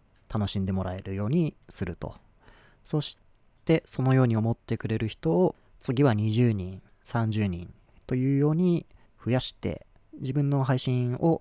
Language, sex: Japanese, male